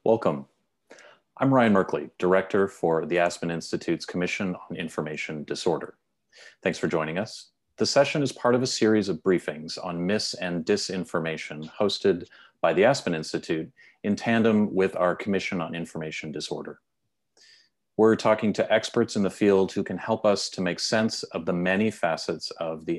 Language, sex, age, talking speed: English, male, 40-59, 165 wpm